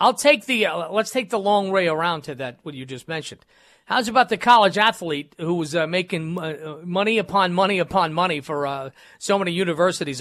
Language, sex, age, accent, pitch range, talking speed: English, male, 40-59, American, 155-200 Hz, 210 wpm